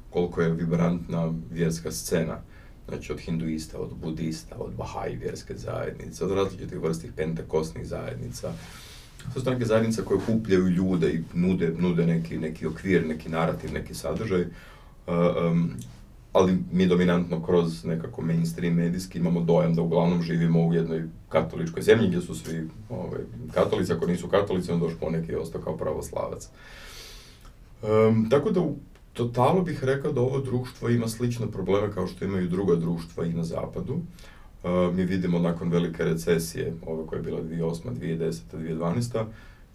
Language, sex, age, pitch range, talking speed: Croatian, male, 30-49, 80-90 Hz, 150 wpm